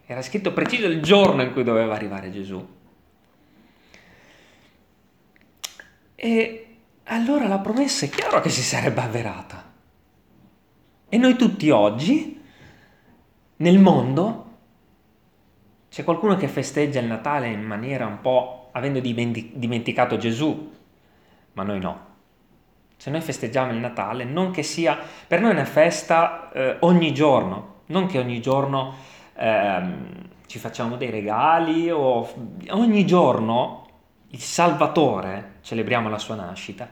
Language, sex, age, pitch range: Italian, male, 30-49, 105-165 Hz